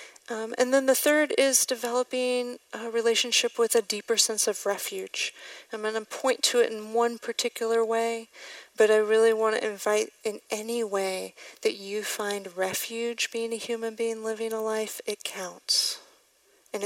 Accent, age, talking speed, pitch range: American, 40-59, 170 wpm, 200-235 Hz